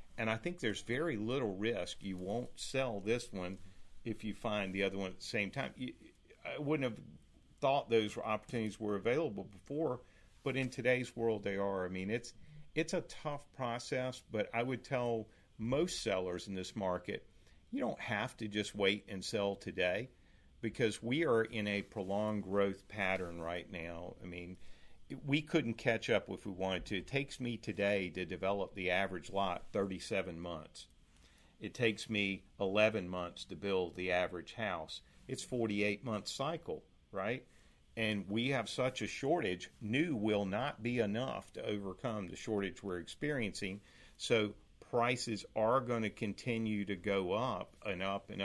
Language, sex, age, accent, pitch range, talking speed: English, male, 50-69, American, 95-115 Hz, 170 wpm